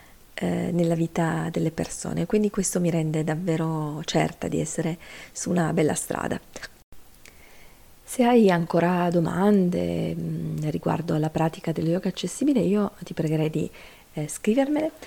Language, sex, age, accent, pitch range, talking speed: Italian, female, 40-59, native, 155-180 Hz, 125 wpm